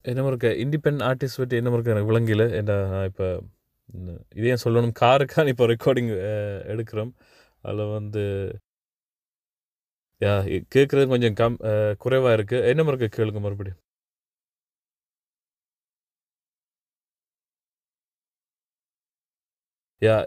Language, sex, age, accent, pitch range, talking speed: Tamil, male, 20-39, native, 105-125 Hz, 90 wpm